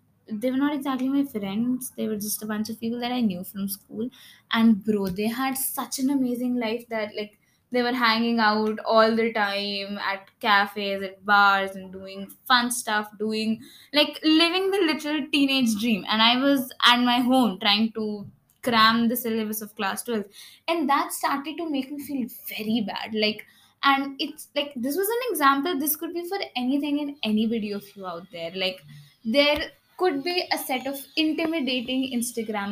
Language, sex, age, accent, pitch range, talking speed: English, female, 20-39, Indian, 210-265 Hz, 185 wpm